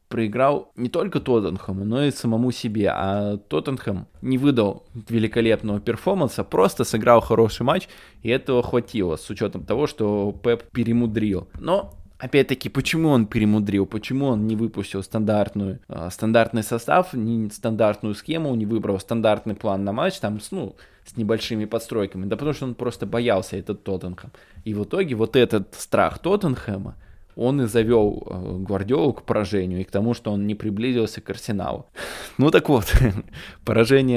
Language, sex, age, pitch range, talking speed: Russian, male, 20-39, 100-120 Hz, 155 wpm